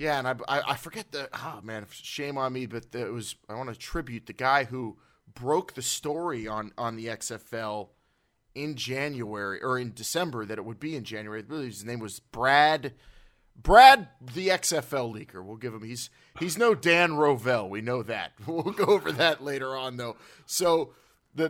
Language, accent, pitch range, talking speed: English, American, 115-145 Hz, 205 wpm